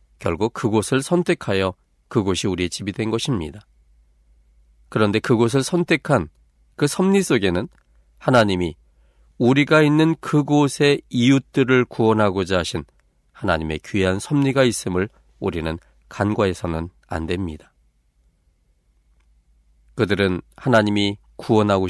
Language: Korean